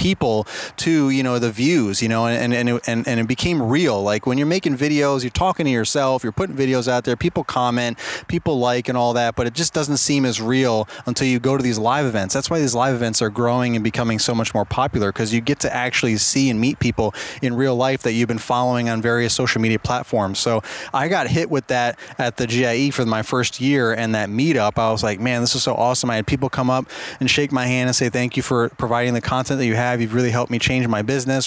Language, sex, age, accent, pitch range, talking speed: English, male, 30-49, American, 120-135 Hz, 260 wpm